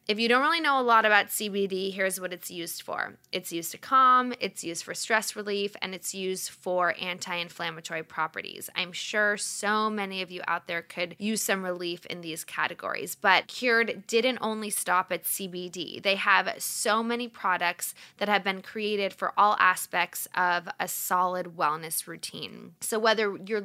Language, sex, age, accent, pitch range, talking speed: English, female, 10-29, American, 180-220 Hz, 180 wpm